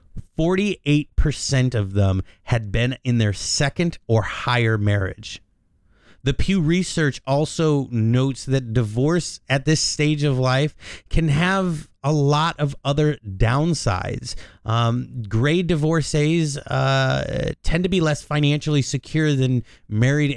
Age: 30-49